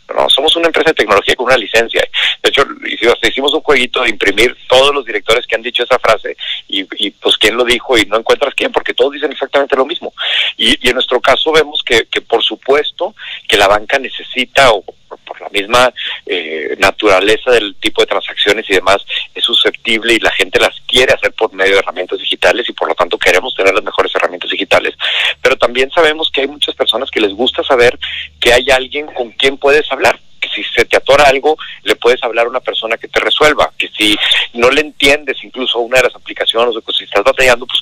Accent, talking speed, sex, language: Mexican, 215 wpm, male, Spanish